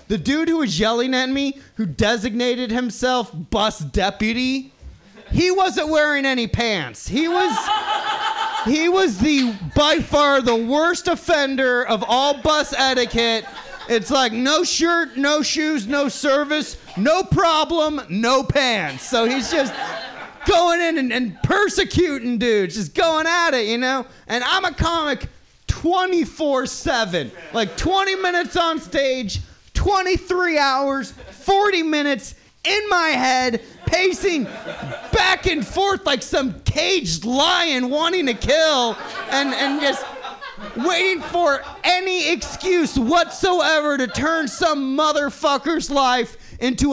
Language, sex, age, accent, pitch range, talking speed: English, male, 30-49, American, 250-345 Hz, 130 wpm